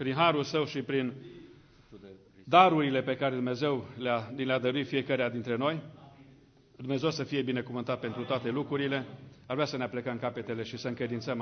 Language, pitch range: English, 135-170 Hz